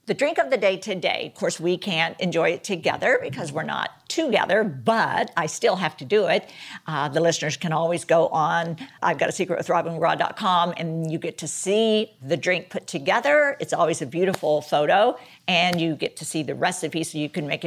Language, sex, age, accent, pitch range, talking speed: English, female, 50-69, American, 165-205 Hz, 210 wpm